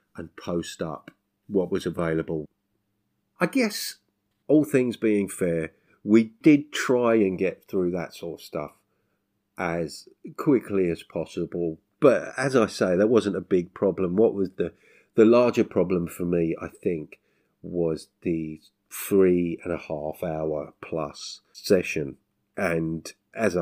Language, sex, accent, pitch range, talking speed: English, male, British, 80-100 Hz, 140 wpm